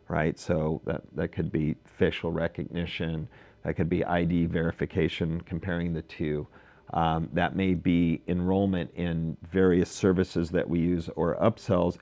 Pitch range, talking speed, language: 85-105 Hz, 145 wpm, English